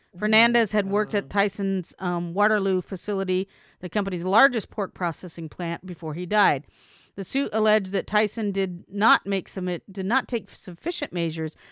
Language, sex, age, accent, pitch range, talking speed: English, female, 40-59, American, 170-205 Hz, 145 wpm